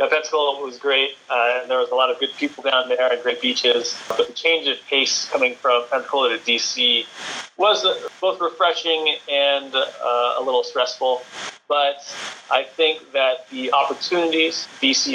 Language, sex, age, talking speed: English, male, 30-49, 165 wpm